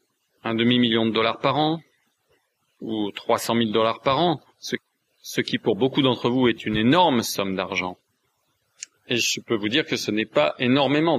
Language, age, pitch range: French, 40-59, 110-140 Hz